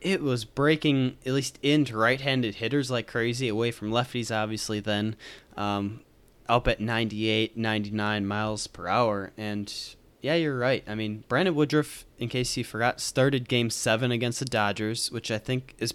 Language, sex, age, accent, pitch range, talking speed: English, male, 20-39, American, 105-130 Hz, 175 wpm